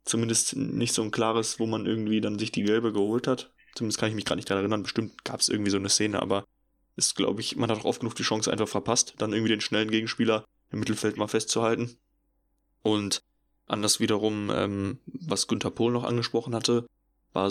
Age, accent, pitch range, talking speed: 10-29, German, 100-115 Hz, 215 wpm